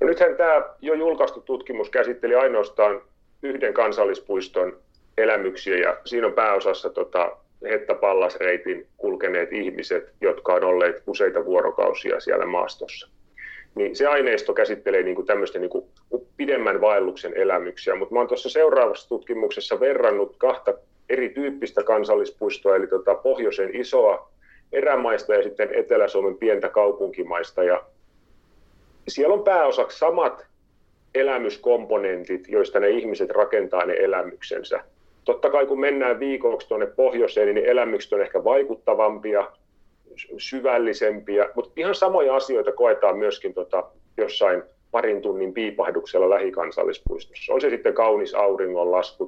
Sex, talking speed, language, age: male, 120 wpm, Finnish, 40-59